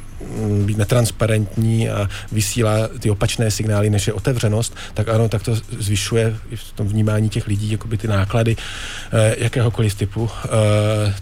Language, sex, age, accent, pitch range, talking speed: Czech, male, 40-59, native, 105-115 Hz, 150 wpm